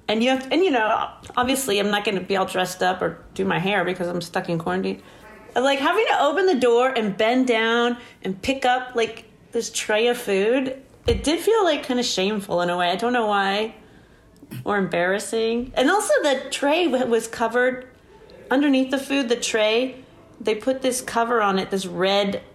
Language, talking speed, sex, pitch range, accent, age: English, 200 wpm, female, 180-245 Hz, American, 30-49